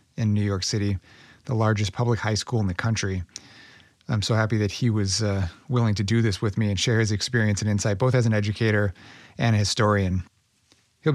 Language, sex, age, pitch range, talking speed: English, male, 30-49, 105-125 Hz, 210 wpm